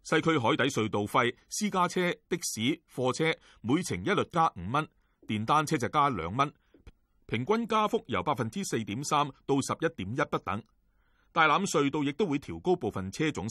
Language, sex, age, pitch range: Chinese, male, 30-49, 105-155 Hz